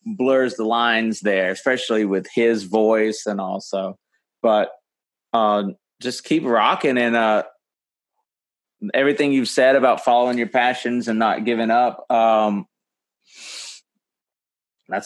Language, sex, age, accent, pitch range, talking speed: English, male, 30-49, American, 105-125 Hz, 120 wpm